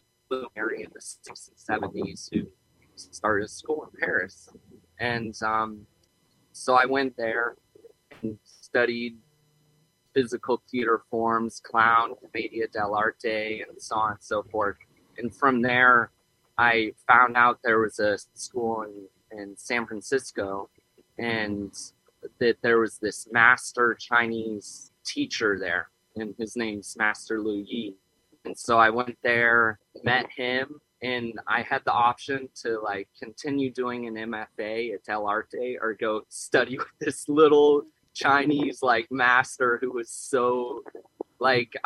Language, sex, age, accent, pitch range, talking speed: English, male, 20-39, American, 110-125 Hz, 135 wpm